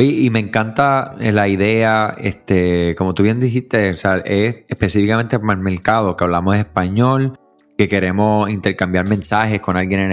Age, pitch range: 20-39, 95-120 Hz